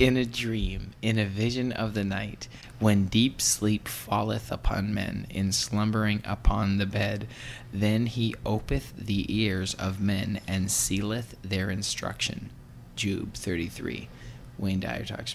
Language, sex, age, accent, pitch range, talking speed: English, male, 20-39, American, 100-120 Hz, 140 wpm